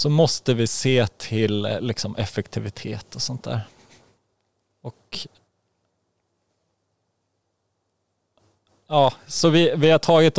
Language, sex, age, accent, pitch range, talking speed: Swedish, male, 20-39, native, 105-130 Hz, 80 wpm